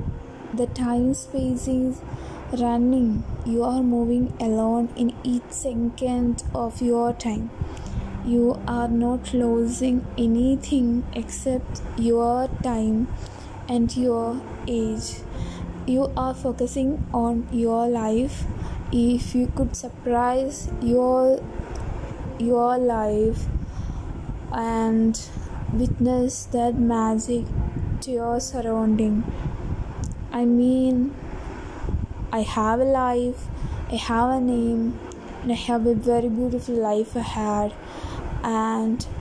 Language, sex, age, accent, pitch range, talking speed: Malayalam, female, 20-39, native, 225-250 Hz, 100 wpm